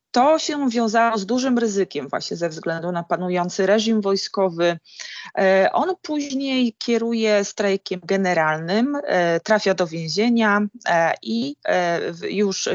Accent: native